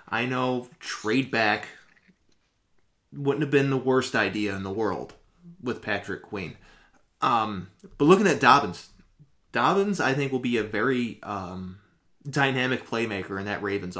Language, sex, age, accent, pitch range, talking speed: English, male, 20-39, American, 105-135 Hz, 145 wpm